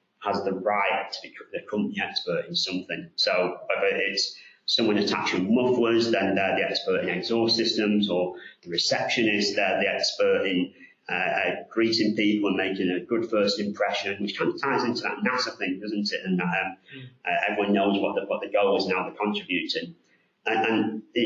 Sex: male